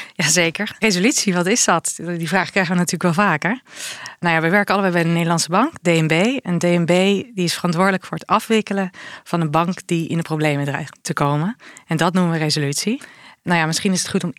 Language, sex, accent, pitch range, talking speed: Dutch, female, Dutch, 160-195 Hz, 215 wpm